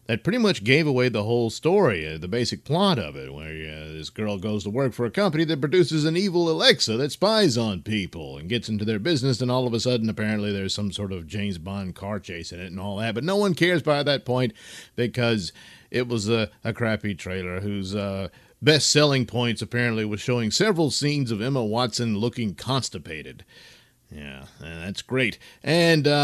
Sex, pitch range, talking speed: male, 105-155 Hz, 205 wpm